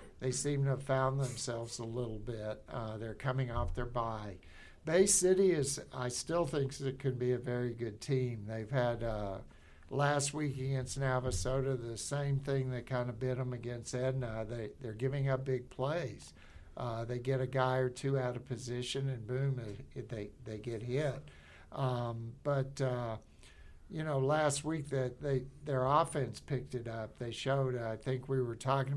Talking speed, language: 190 wpm, English